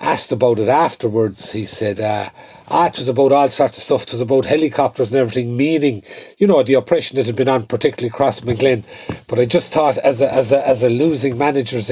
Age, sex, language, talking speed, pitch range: 40-59, male, English, 225 wpm, 130-200 Hz